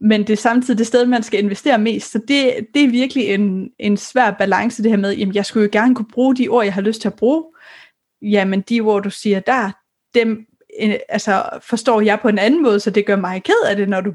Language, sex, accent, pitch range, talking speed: Danish, female, native, 205-250 Hz, 255 wpm